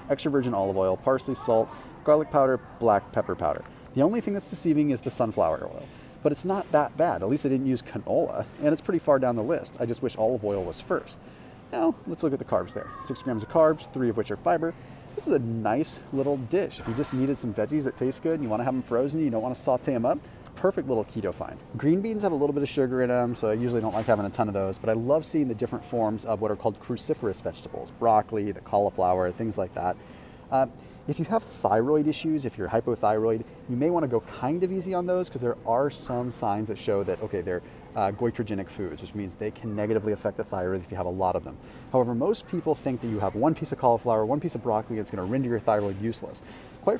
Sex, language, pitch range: male, English, 110-145 Hz